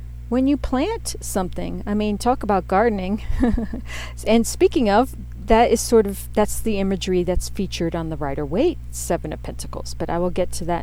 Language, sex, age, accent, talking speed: English, female, 40-59, American, 185 wpm